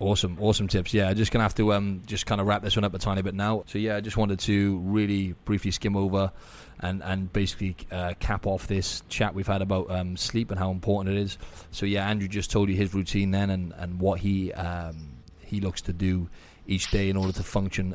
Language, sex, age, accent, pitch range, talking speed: English, male, 30-49, British, 90-100 Hz, 245 wpm